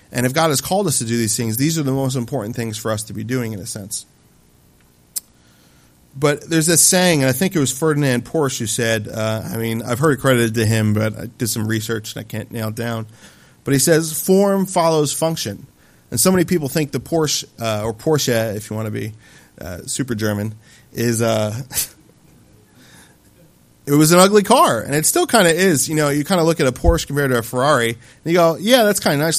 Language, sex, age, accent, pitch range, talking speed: English, male, 30-49, American, 115-150 Hz, 235 wpm